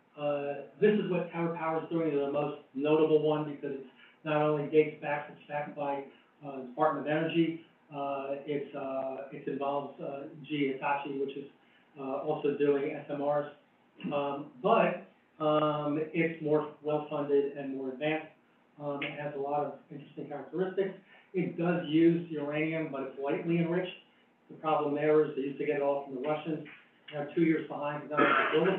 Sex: male